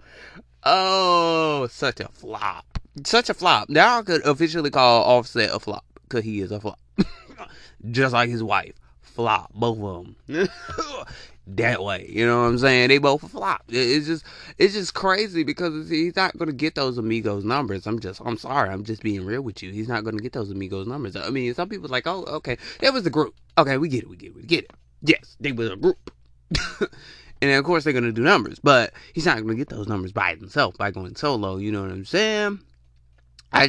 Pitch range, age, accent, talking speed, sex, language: 95-150 Hz, 20-39, American, 215 wpm, male, English